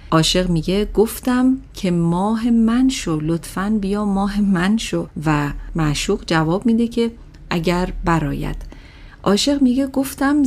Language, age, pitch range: Persian, 40-59, 155-205 Hz